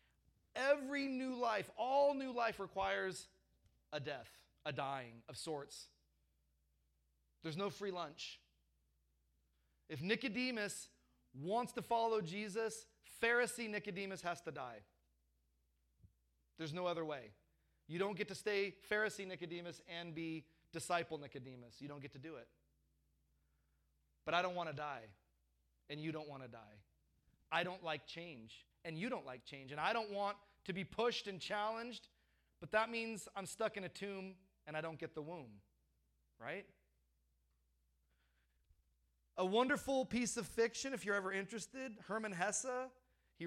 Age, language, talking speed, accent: 30-49, English, 145 wpm, American